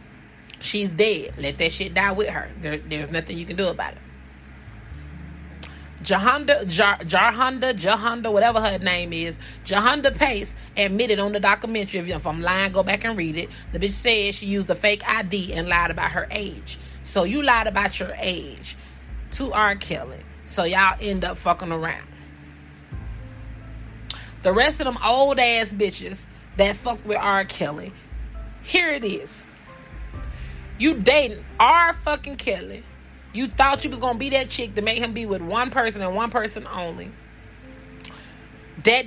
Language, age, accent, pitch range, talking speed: English, 30-49, American, 140-230 Hz, 165 wpm